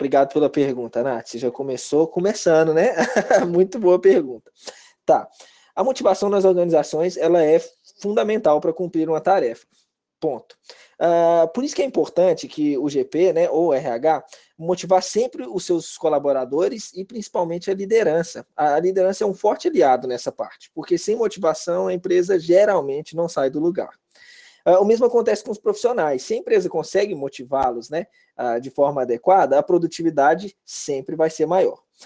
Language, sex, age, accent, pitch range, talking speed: Portuguese, male, 20-39, Brazilian, 145-200 Hz, 155 wpm